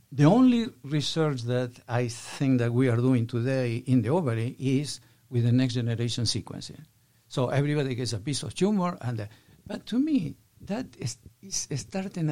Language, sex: English, male